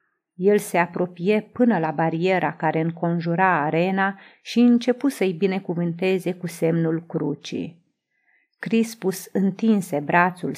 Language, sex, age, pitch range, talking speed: Romanian, female, 30-49, 175-230 Hz, 110 wpm